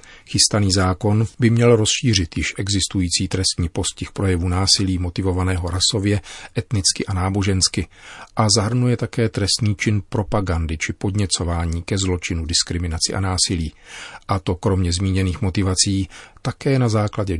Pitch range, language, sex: 90-110 Hz, Czech, male